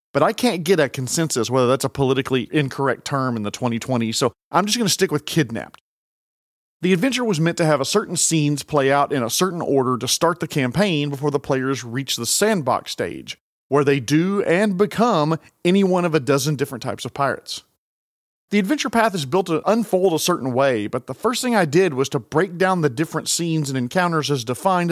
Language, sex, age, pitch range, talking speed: English, male, 40-59, 130-185 Hz, 215 wpm